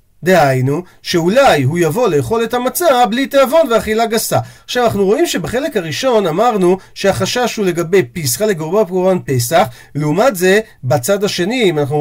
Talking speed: 150 wpm